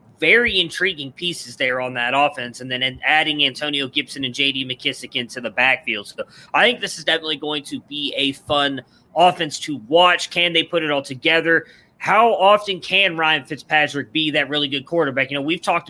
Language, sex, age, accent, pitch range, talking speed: English, male, 20-39, American, 135-175 Hz, 195 wpm